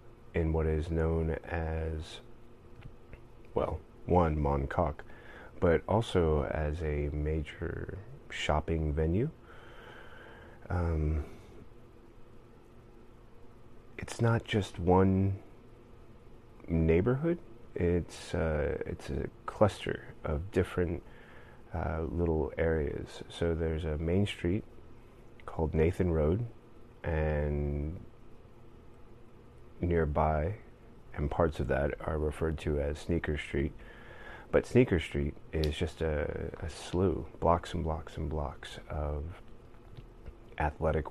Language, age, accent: English, 30-49, American